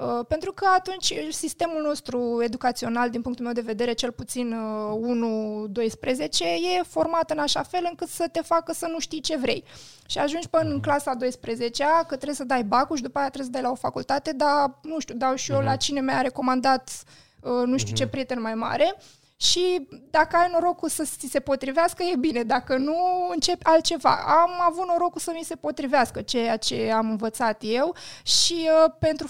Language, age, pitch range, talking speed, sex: Romanian, 20-39, 240-315 Hz, 190 wpm, female